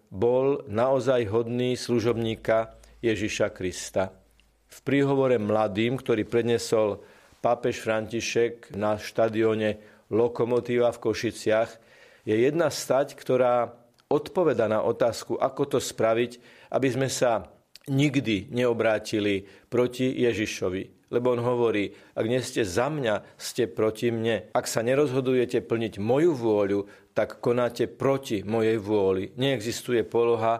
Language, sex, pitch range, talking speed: Slovak, male, 110-125 Hz, 115 wpm